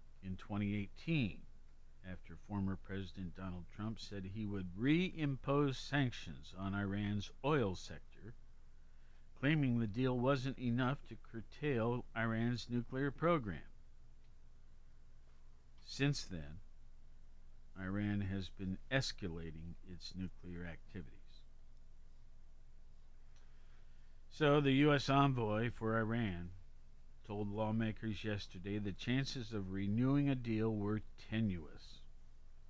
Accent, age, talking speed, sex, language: American, 50-69, 95 wpm, male, English